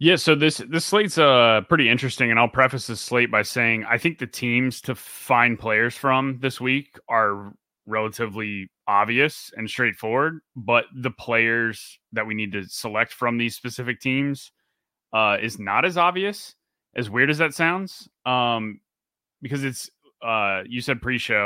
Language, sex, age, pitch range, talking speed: English, male, 20-39, 105-130 Hz, 165 wpm